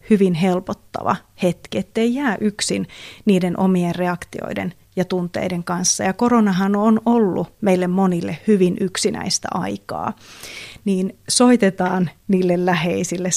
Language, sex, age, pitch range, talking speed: Finnish, female, 30-49, 180-195 Hz, 110 wpm